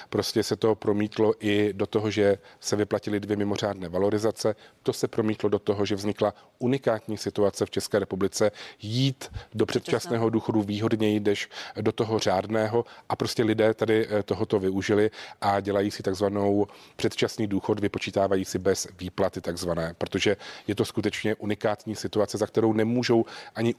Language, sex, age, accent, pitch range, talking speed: Czech, male, 40-59, native, 100-110 Hz, 155 wpm